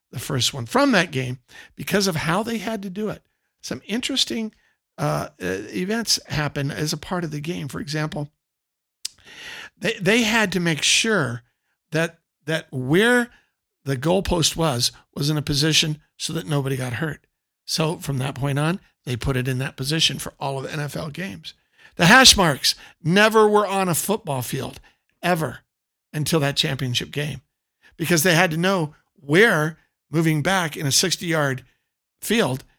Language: English